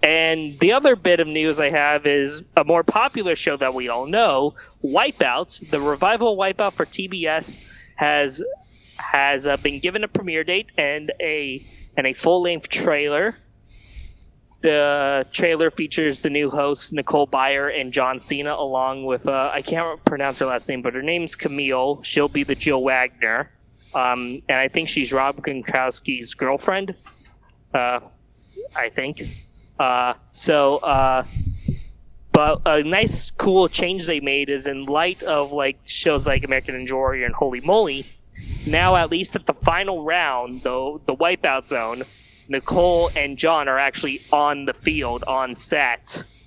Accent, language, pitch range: American, English, 130-160 Hz